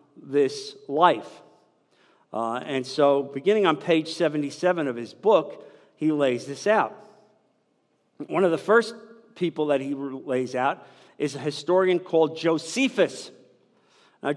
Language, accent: English, American